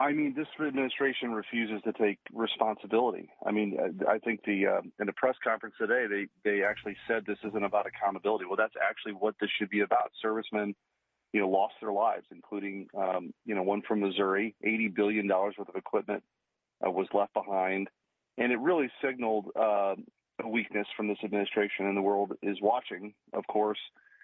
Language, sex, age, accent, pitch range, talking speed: English, male, 40-59, American, 100-115 Hz, 185 wpm